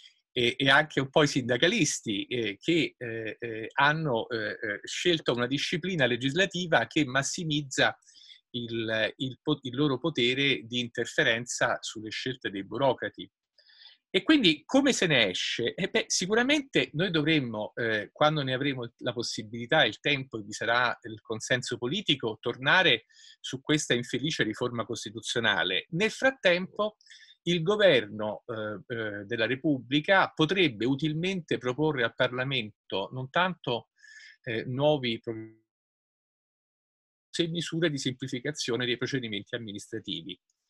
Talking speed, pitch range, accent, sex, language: 120 wpm, 115-160 Hz, Italian, male, English